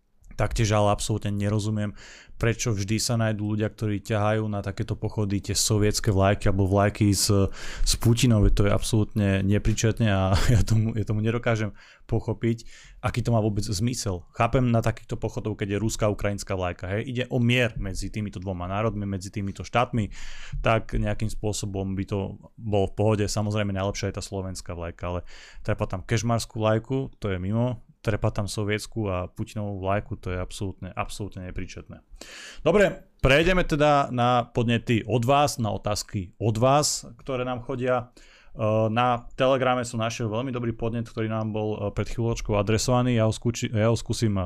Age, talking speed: 20-39, 165 wpm